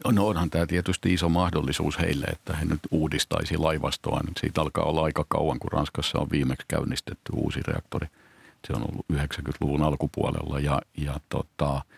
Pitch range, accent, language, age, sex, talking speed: 70-85 Hz, native, Finnish, 50-69, male, 165 wpm